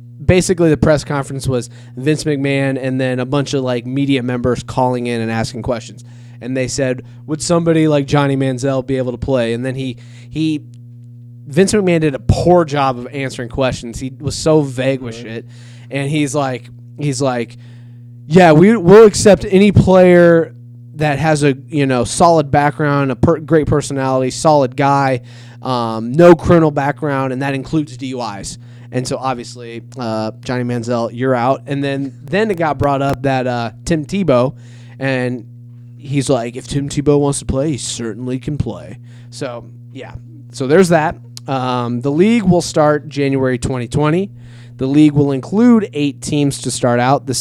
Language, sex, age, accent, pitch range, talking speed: English, male, 20-39, American, 120-150 Hz, 175 wpm